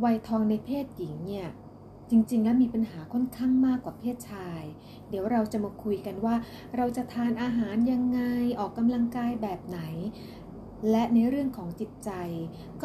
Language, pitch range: Thai, 200-245 Hz